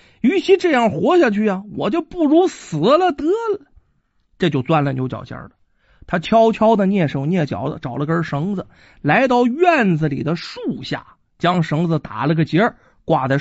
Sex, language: male, Chinese